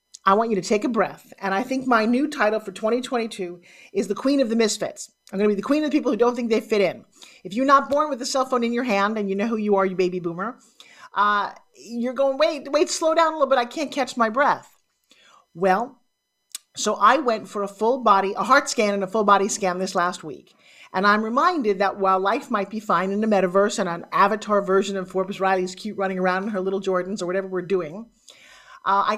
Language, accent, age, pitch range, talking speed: English, American, 40-59, 195-240 Hz, 250 wpm